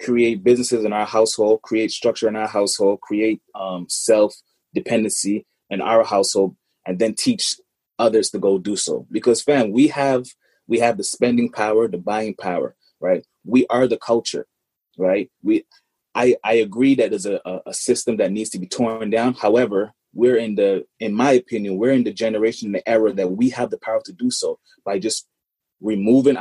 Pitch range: 105-135 Hz